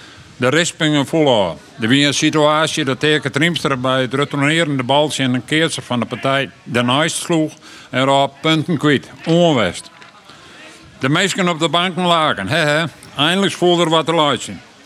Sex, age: male, 50-69